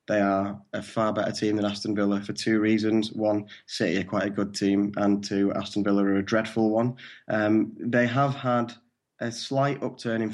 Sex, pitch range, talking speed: male, 100-110 Hz, 205 wpm